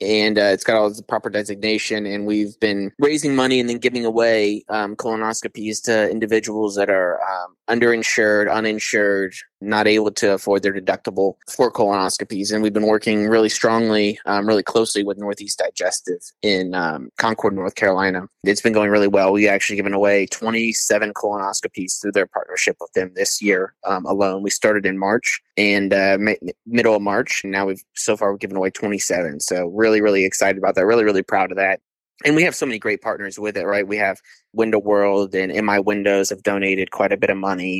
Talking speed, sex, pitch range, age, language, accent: 200 wpm, male, 100-110 Hz, 20-39, English, American